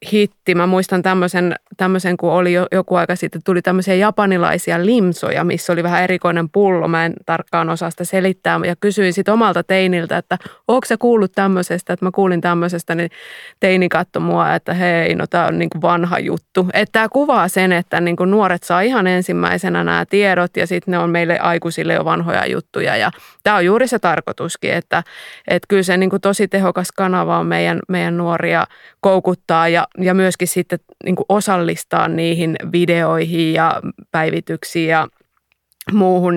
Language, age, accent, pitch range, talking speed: Finnish, 20-39, native, 170-190 Hz, 165 wpm